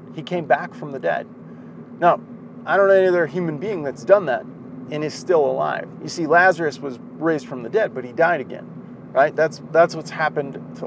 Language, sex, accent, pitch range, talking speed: English, male, American, 145-195 Hz, 215 wpm